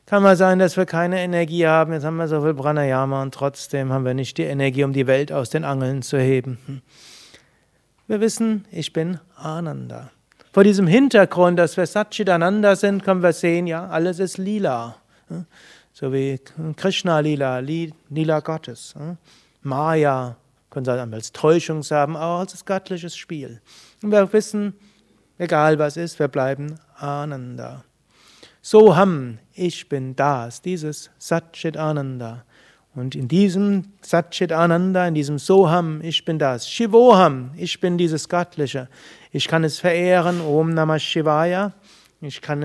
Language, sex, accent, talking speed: German, male, German, 150 wpm